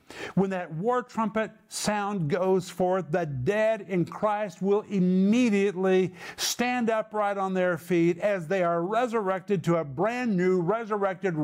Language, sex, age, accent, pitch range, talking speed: English, male, 50-69, American, 150-190 Hz, 140 wpm